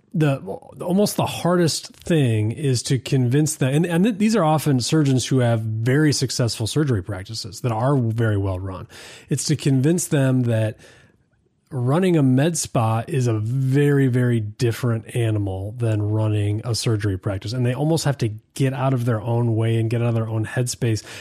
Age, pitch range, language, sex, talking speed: 30-49, 115-140 Hz, English, male, 180 wpm